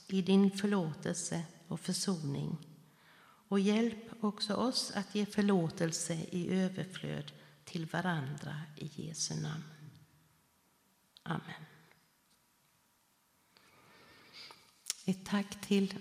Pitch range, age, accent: 160-190 Hz, 50-69, native